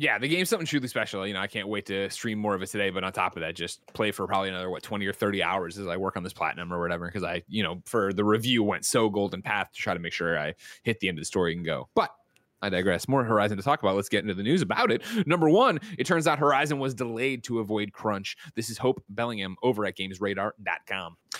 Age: 30-49